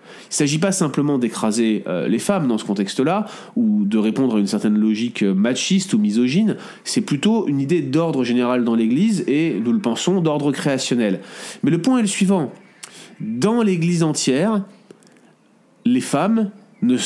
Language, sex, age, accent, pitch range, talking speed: French, male, 30-49, French, 125-200 Hz, 165 wpm